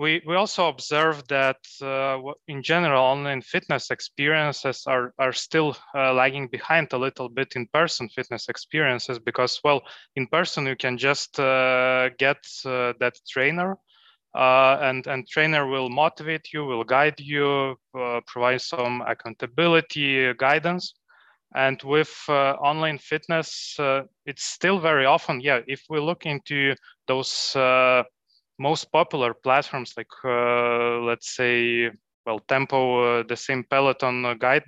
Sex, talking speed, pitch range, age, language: male, 140 wpm, 130-145 Hz, 20-39, English